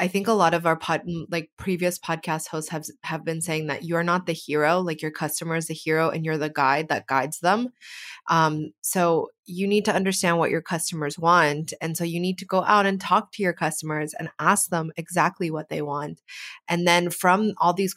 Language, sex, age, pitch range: English, female, 20-39, 160-180 Hz